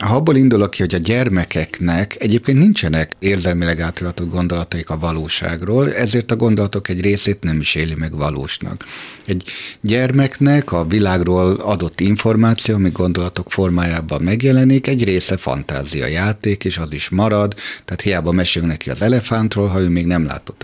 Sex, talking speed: male, 155 wpm